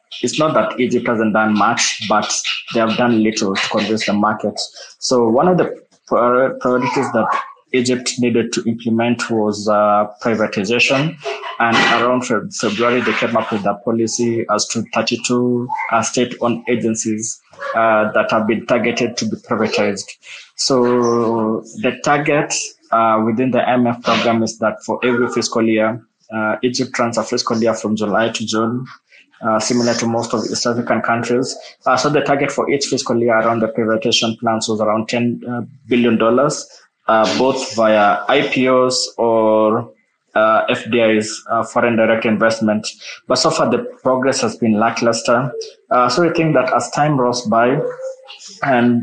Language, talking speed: English, 160 wpm